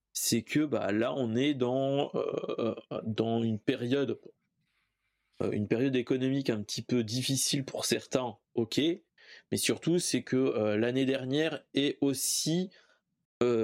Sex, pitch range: male, 115-160 Hz